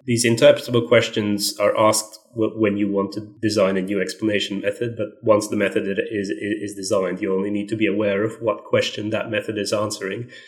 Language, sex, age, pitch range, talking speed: English, male, 30-49, 100-115 Hz, 195 wpm